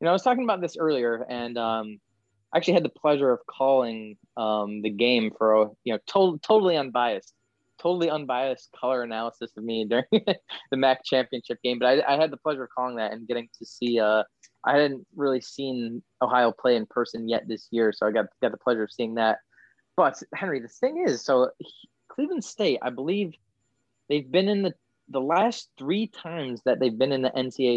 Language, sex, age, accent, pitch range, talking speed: English, male, 20-39, American, 115-160 Hz, 205 wpm